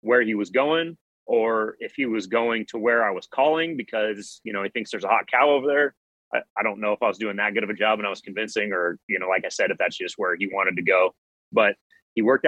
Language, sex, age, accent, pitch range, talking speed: English, male, 30-49, American, 100-120 Hz, 285 wpm